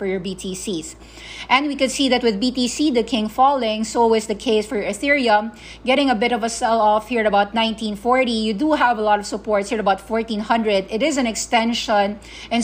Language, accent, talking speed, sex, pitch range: English, Filipino, 215 wpm, female, 205-240 Hz